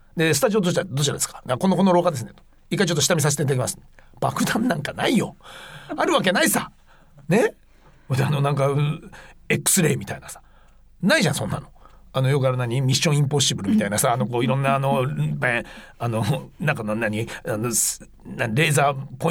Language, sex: Japanese, male